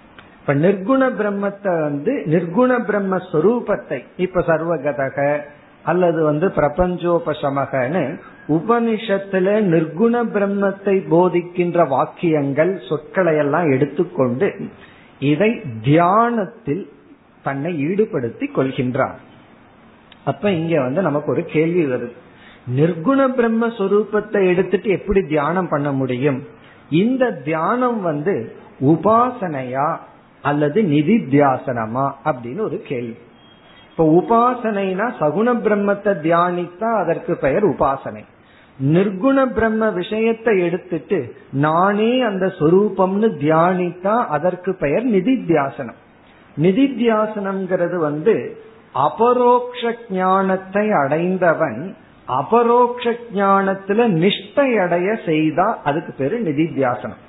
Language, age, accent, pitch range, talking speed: Tamil, 50-69, native, 155-215 Hz, 70 wpm